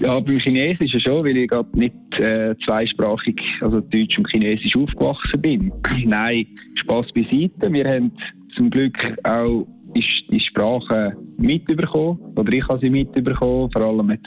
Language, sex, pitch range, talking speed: German, male, 105-130 Hz, 150 wpm